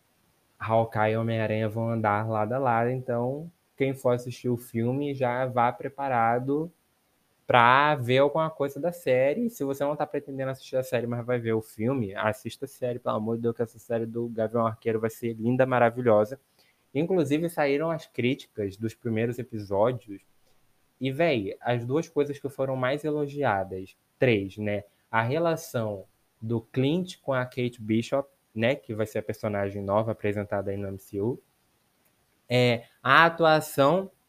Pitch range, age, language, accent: 115-140 Hz, 20-39, Portuguese, Brazilian